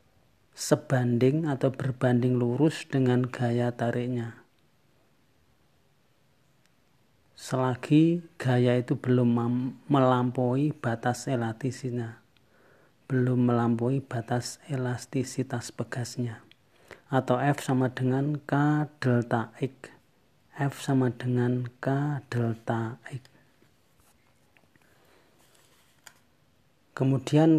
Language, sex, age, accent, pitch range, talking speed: Indonesian, male, 40-59, native, 120-140 Hz, 75 wpm